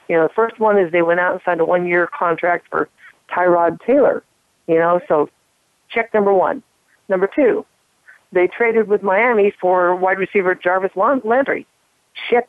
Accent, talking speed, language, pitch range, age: American, 170 wpm, English, 175-215 Hz, 50-69